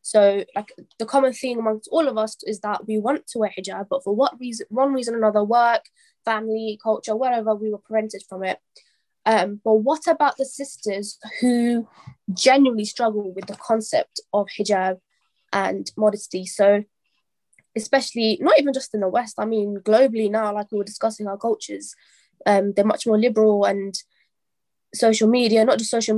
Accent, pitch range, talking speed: British, 205-245 Hz, 180 wpm